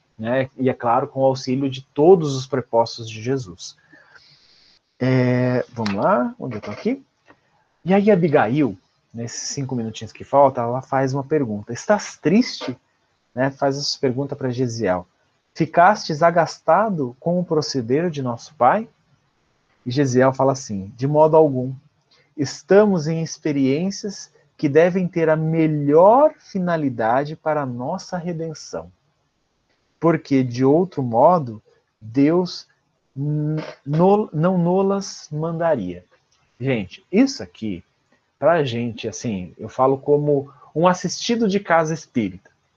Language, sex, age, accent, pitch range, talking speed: Portuguese, male, 40-59, Brazilian, 125-165 Hz, 130 wpm